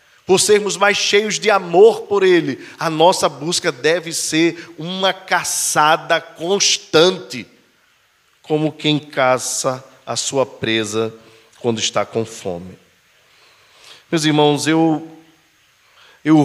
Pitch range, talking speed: 120-150 Hz, 110 wpm